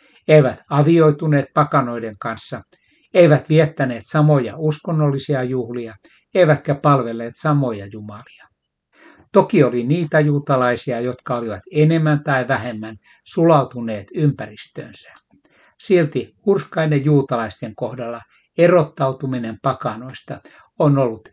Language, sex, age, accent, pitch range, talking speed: Finnish, male, 60-79, native, 125-155 Hz, 90 wpm